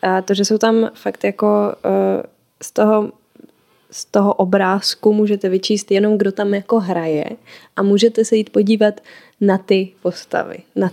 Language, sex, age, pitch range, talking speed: Czech, female, 10-29, 185-210 Hz, 155 wpm